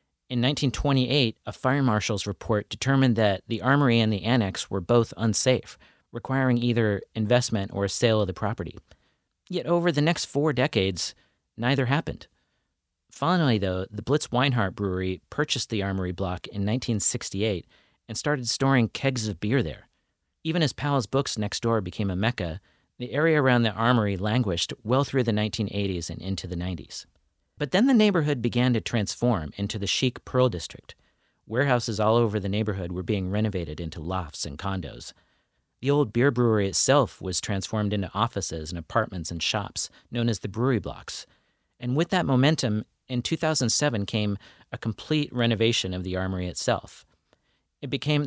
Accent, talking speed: American, 165 wpm